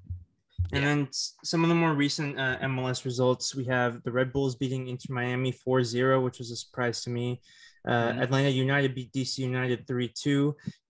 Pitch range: 125-145 Hz